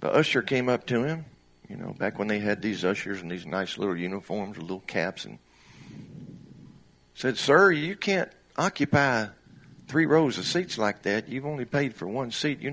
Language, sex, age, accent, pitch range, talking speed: English, male, 50-69, American, 85-140 Hz, 195 wpm